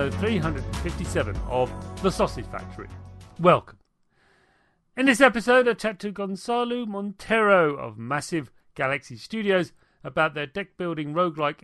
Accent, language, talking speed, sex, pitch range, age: British, English, 125 wpm, male, 125-195 Hz, 40-59